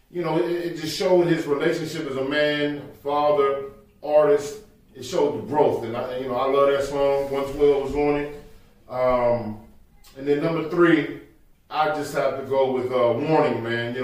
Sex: male